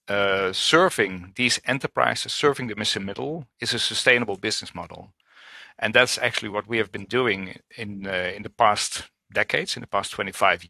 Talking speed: 175 wpm